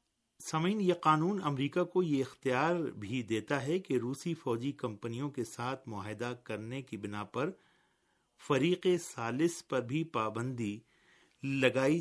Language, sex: Urdu, male